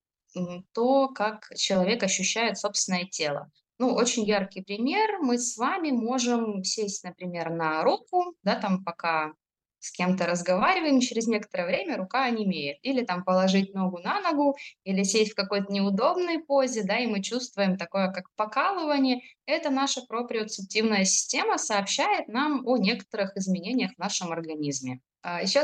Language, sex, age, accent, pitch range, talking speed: Russian, female, 20-39, native, 185-250 Hz, 145 wpm